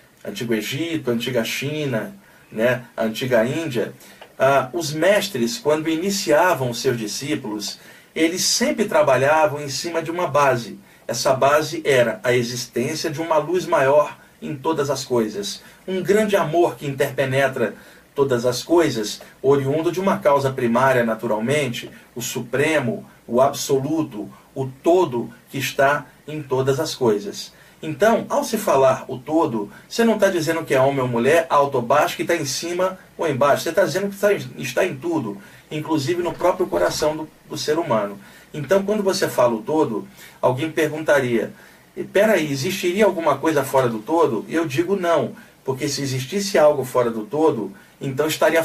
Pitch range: 130-175 Hz